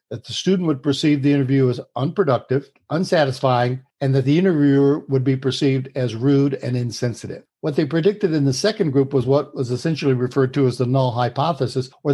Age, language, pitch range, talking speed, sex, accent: 60-79, English, 130-145 Hz, 195 wpm, male, American